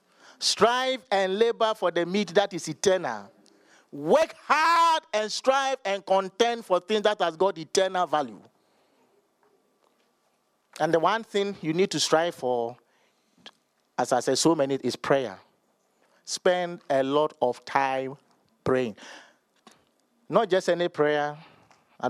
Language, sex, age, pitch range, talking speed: English, male, 50-69, 145-190 Hz, 130 wpm